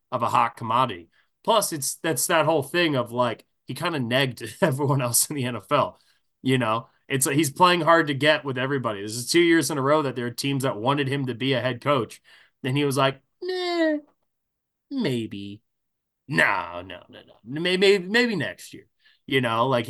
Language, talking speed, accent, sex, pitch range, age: English, 200 wpm, American, male, 115-155 Hz, 20-39